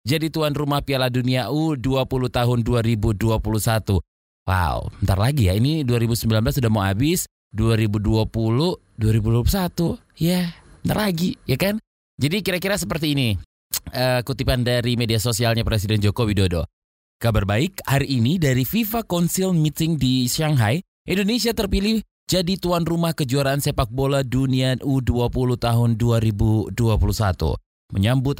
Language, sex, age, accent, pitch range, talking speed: Indonesian, male, 20-39, native, 110-155 Hz, 130 wpm